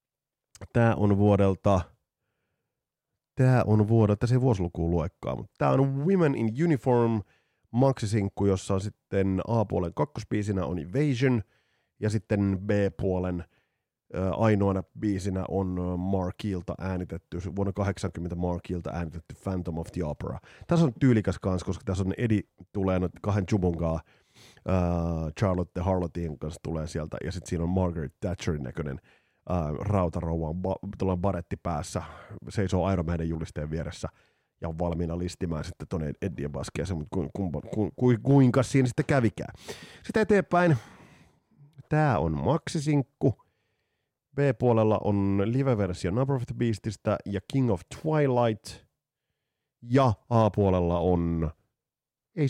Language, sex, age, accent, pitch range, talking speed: Finnish, male, 30-49, native, 90-120 Hz, 125 wpm